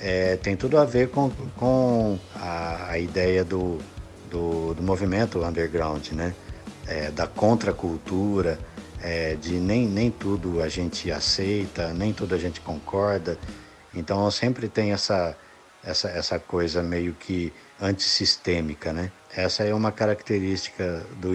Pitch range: 90-110 Hz